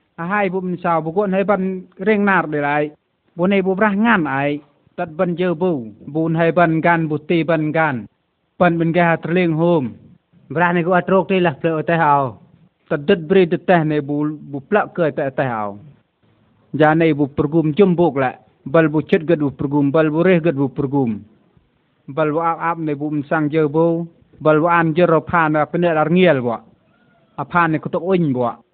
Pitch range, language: 150-175 Hz, Vietnamese